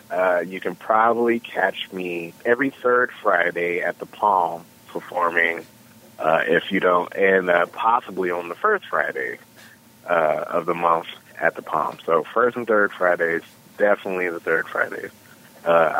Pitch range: 90-125 Hz